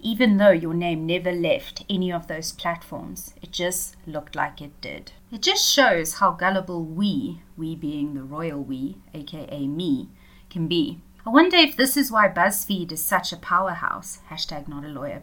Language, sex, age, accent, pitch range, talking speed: English, female, 30-49, South African, 160-205 Hz, 180 wpm